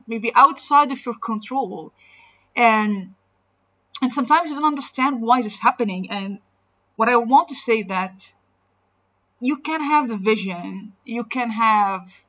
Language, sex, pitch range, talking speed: English, female, 200-275 Hz, 145 wpm